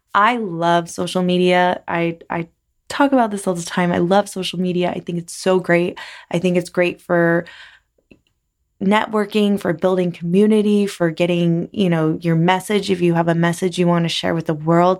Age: 20-39